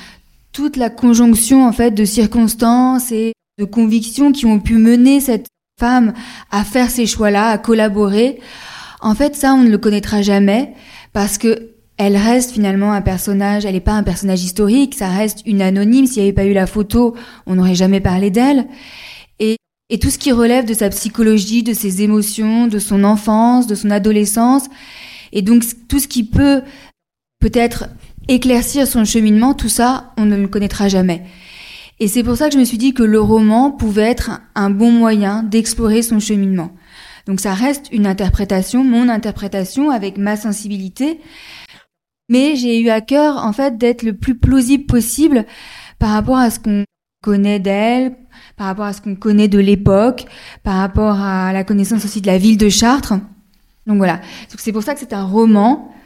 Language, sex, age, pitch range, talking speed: French, female, 20-39, 205-245 Hz, 185 wpm